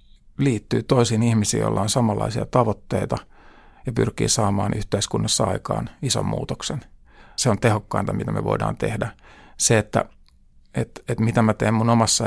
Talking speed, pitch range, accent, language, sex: 145 wpm, 95-115 Hz, native, Finnish, male